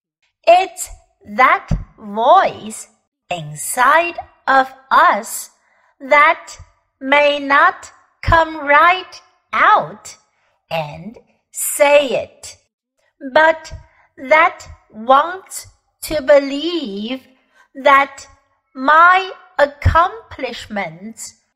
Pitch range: 240-330 Hz